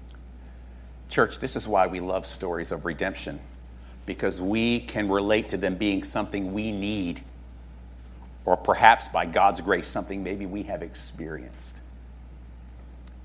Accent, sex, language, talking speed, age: American, male, English, 130 wpm, 50-69